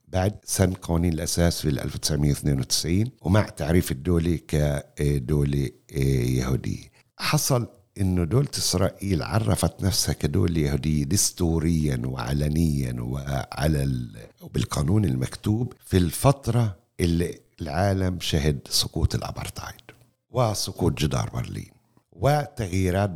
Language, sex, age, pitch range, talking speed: Arabic, male, 60-79, 80-105 Hz, 95 wpm